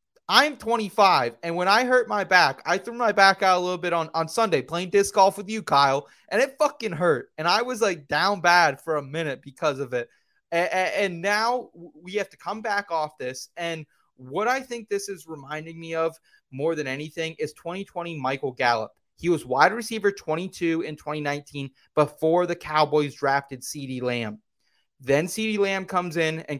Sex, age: male, 20-39